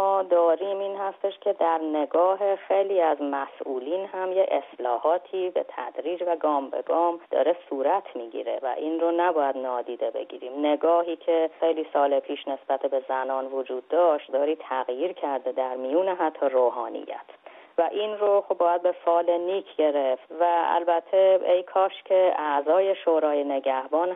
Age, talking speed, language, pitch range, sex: 30-49, 150 wpm, Persian, 135-170 Hz, female